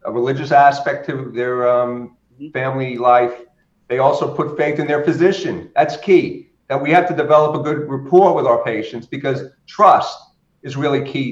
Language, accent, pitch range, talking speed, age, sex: English, American, 125-155 Hz, 175 wpm, 50-69, male